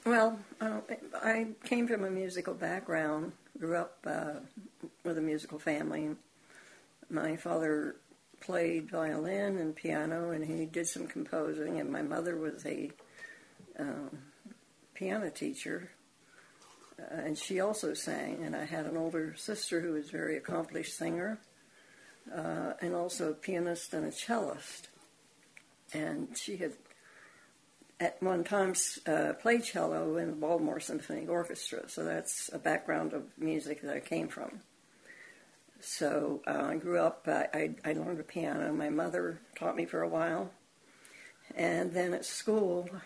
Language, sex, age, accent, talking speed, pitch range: English, female, 60-79, American, 150 wpm, 160-210 Hz